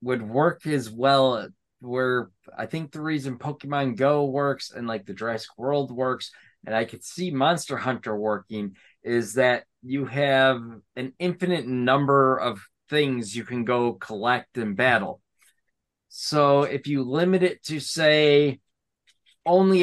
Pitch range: 120-145 Hz